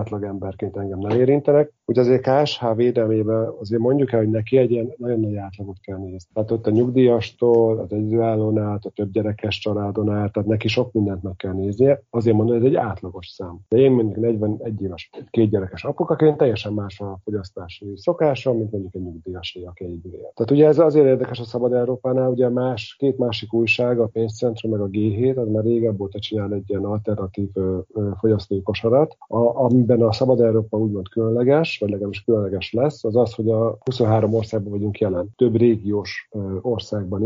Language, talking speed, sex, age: Hungarian, 170 wpm, male, 40-59